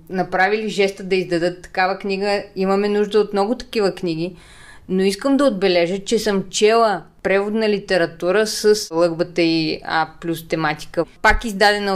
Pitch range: 185-220 Hz